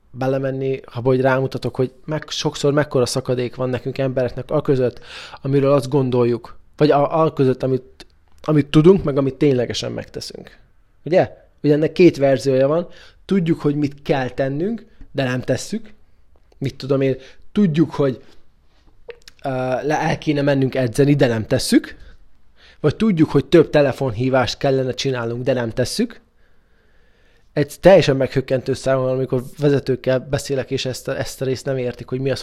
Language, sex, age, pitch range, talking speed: Hungarian, male, 20-39, 130-160 Hz, 155 wpm